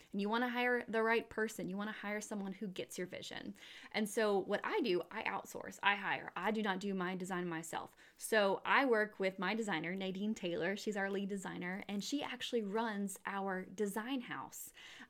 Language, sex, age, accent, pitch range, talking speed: English, female, 20-39, American, 185-225 Hz, 205 wpm